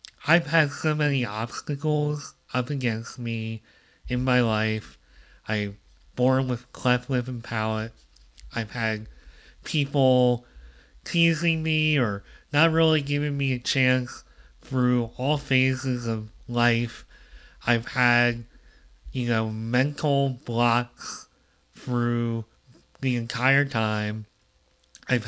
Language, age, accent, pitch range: English, 30-49, American, 115-135 Hz